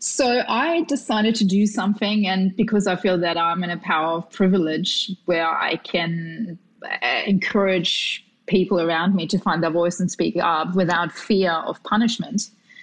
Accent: Australian